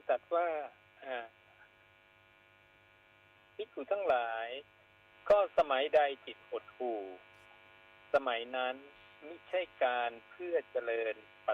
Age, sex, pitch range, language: 60-79, male, 95-145 Hz, Thai